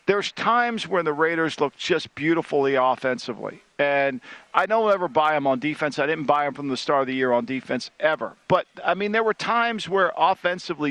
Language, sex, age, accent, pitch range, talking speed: English, male, 50-69, American, 145-190 Hz, 210 wpm